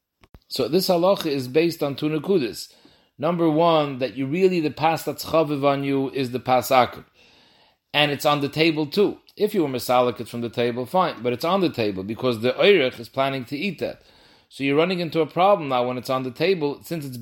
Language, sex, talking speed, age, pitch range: English, male, 215 wpm, 40-59, 120-150 Hz